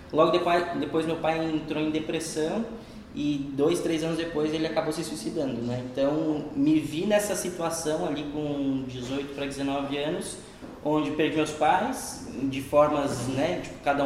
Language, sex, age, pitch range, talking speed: Portuguese, male, 10-29, 140-175 Hz, 160 wpm